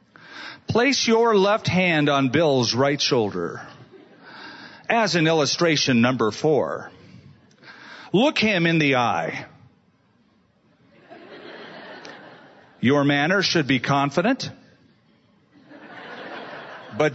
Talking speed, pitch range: 85 wpm, 135-190 Hz